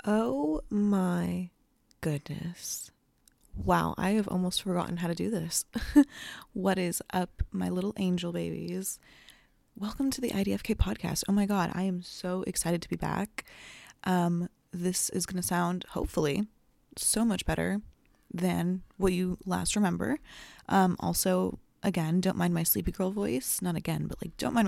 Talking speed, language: 155 wpm, English